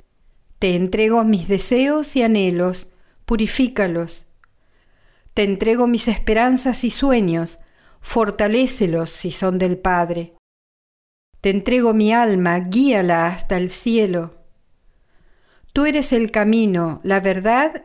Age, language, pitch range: 50-69, Spanish, 175-230 Hz